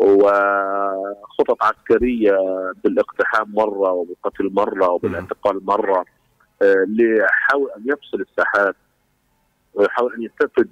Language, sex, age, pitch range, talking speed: Arabic, male, 40-59, 110-175 Hz, 85 wpm